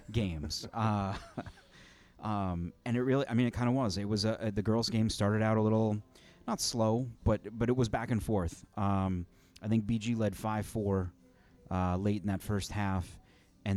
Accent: American